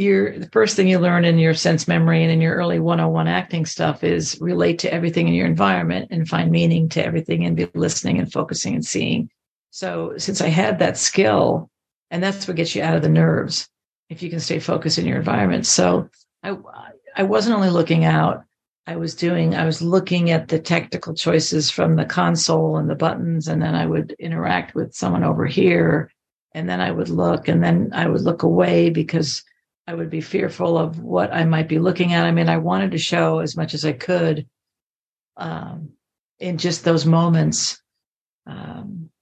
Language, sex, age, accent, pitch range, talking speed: English, female, 50-69, American, 160-175 Hz, 200 wpm